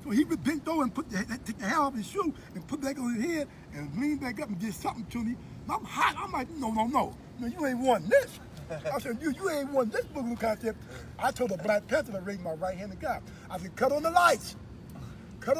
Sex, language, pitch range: male, English, 200-275 Hz